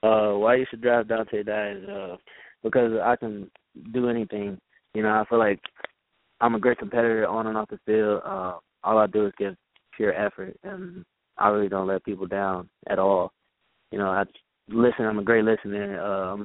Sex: male